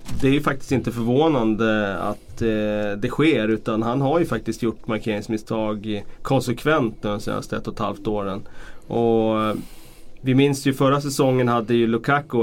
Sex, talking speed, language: male, 165 wpm, Swedish